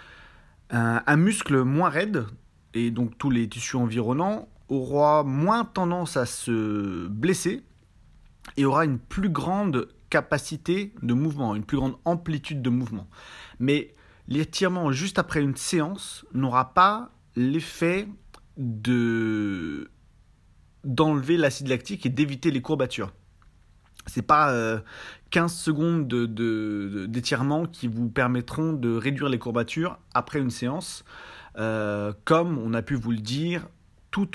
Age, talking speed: 30-49, 130 wpm